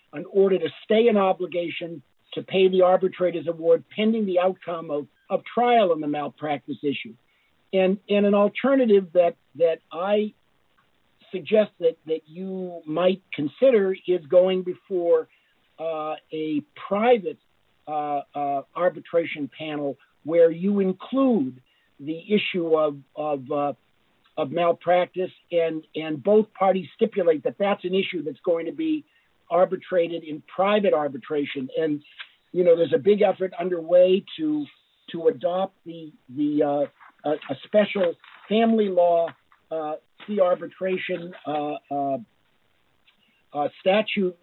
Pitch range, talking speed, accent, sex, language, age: 155-190 Hz, 130 wpm, American, male, English, 60-79